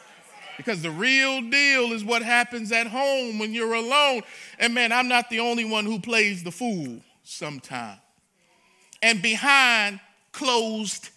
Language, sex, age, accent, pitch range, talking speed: English, male, 40-59, American, 220-275 Hz, 145 wpm